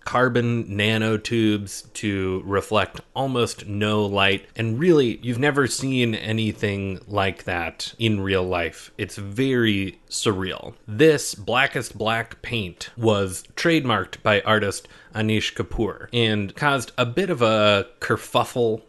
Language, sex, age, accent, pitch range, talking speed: English, male, 30-49, American, 105-125 Hz, 120 wpm